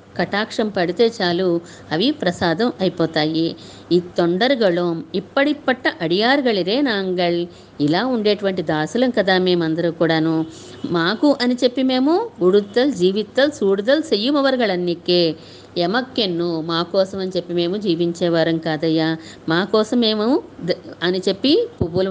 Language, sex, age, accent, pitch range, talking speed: Telugu, female, 50-69, native, 165-225 Hz, 105 wpm